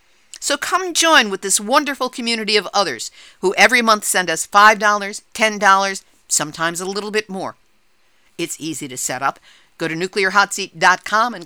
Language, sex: English, female